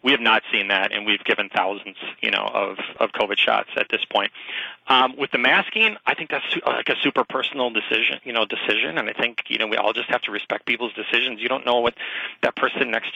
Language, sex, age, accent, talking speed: English, male, 30-49, American, 240 wpm